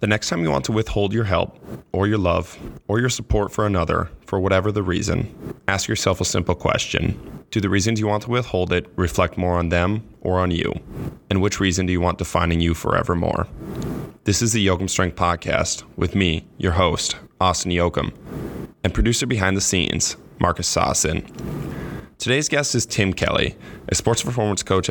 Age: 20-39